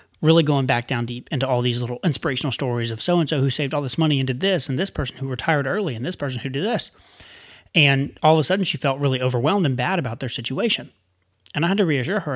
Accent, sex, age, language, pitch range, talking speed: American, male, 30-49, English, 130-170 Hz, 265 wpm